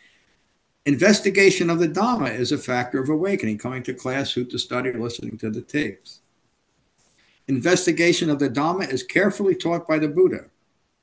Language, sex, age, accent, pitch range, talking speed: English, male, 50-69, American, 125-170 Hz, 160 wpm